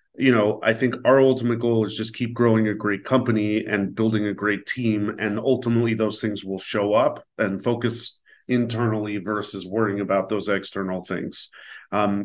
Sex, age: male, 40-59